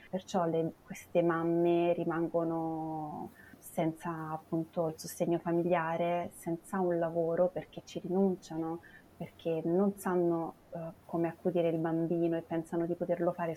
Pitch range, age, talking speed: 160-175 Hz, 30-49, 130 wpm